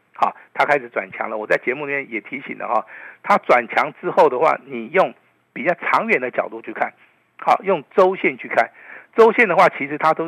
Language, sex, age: Chinese, male, 50-69